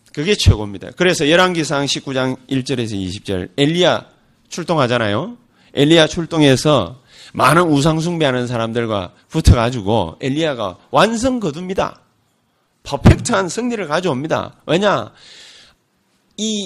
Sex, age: male, 30-49